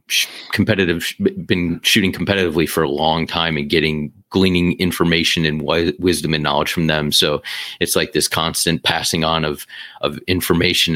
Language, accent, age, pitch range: English, American, 30-49, 80-90 Hz